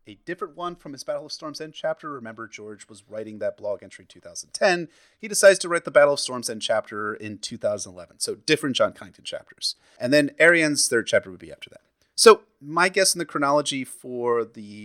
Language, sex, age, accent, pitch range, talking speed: English, male, 30-49, American, 105-160 Hz, 215 wpm